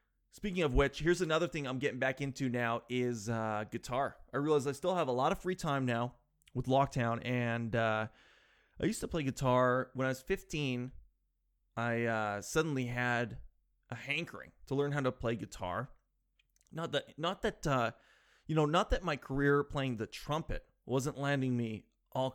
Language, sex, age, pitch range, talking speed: English, male, 20-39, 120-140 Hz, 185 wpm